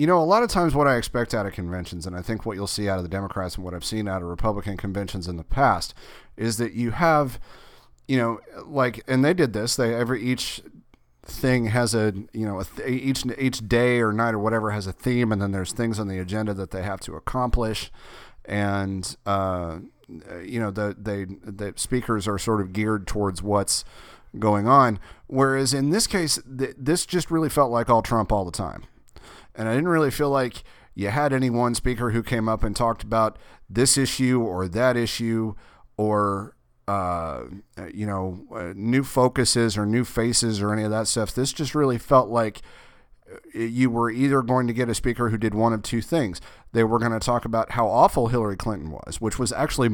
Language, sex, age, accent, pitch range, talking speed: English, male, 30-49, American, 100-125 Hz, 205 wpm